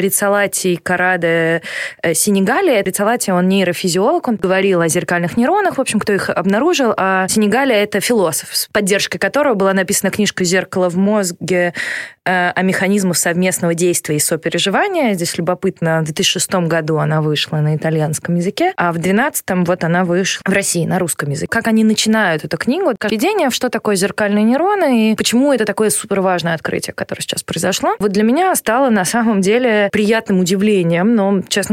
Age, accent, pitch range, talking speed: 20-39, native, 175-210 Hz, 170 wpm